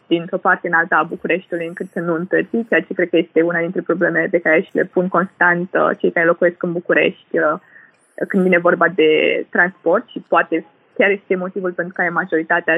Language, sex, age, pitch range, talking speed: Romanian, female, 20-39, 170-195 Hz, 200 wpm